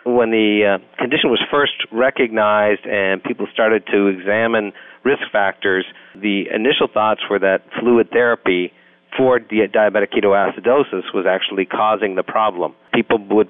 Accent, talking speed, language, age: American, 135 wpm, English, 40-59